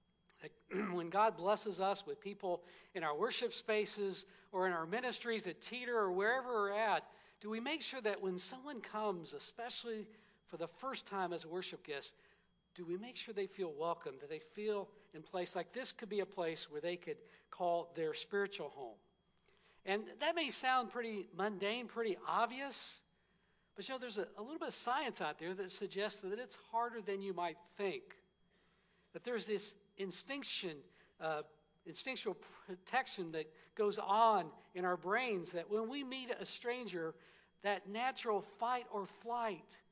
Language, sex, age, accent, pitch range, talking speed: English, male, 60-79, American, 180-230 Hz, 170 wpm